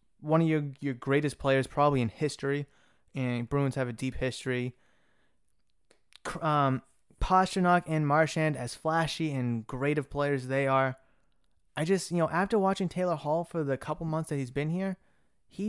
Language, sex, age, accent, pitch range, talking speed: English, male, 20-39, American, 130-160 Hz, 170 wpm